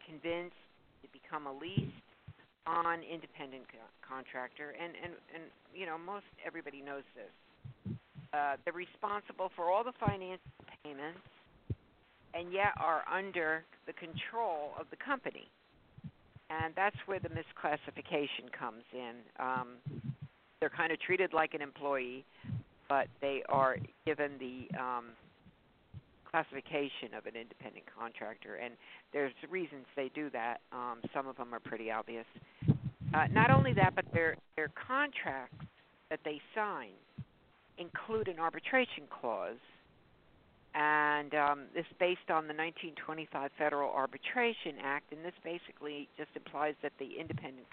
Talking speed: 135 wpm